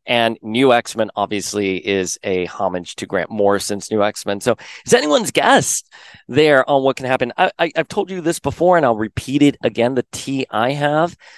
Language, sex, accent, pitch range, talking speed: English, male, American, 105-135 Hz, 195 wpm